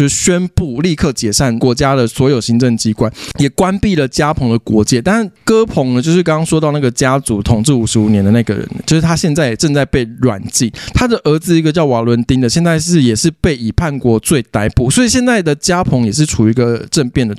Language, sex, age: Chinese, male, 20-39